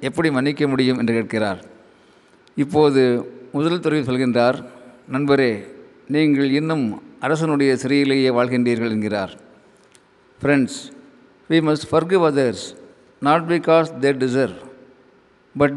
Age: 50-69